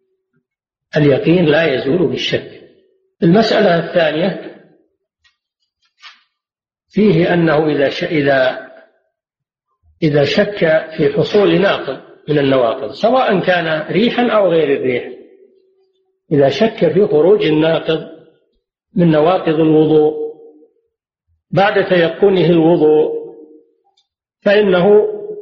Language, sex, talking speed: Arabic, male, 85 wpm